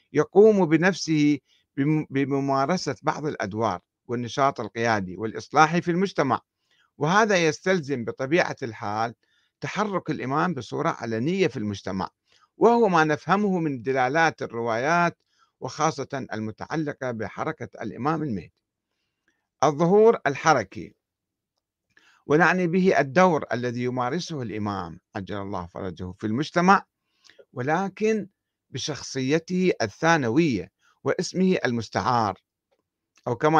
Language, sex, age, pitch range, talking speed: Arabic, male, 60-79, 115-170 Hz, 90 wpm